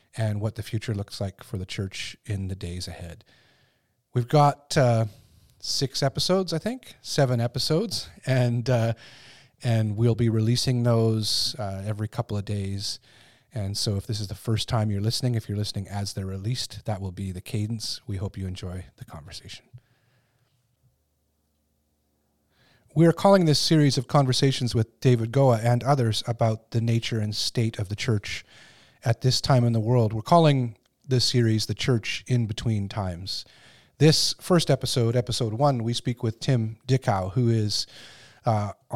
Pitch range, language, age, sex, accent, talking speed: 105-125 Hz, English, 40-59, male, American, 170 wpm